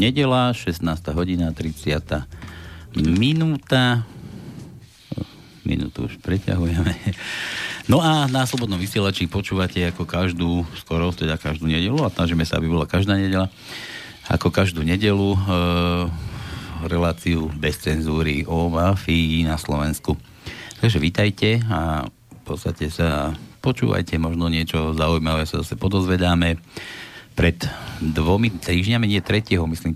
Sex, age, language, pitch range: male, 50-69, Slovak, 80-100 Hz